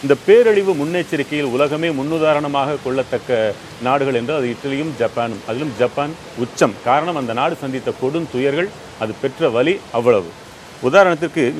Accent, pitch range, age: native, 130-165 Hz, 40-59